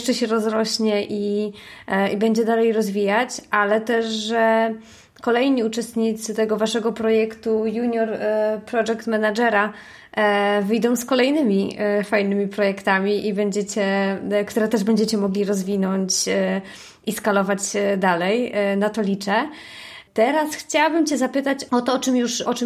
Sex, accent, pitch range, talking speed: female, native, 200-230 Hz, 120 wpm